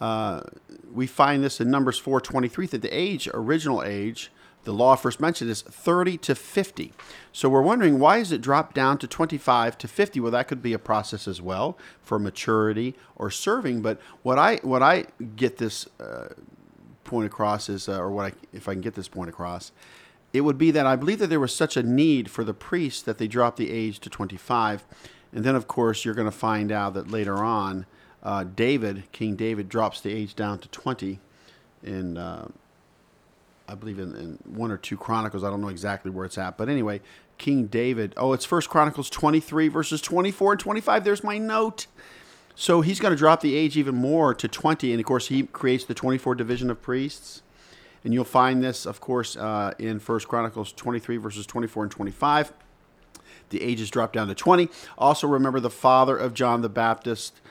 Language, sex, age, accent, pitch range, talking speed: English, male, 50-69, American, 105-140 Hz, 205 wpm